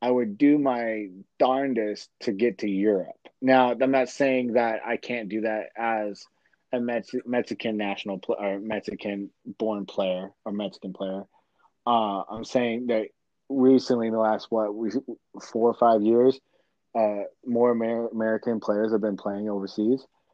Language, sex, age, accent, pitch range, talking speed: English, male, 20-39, American, 105-125 Hz, 150 wpm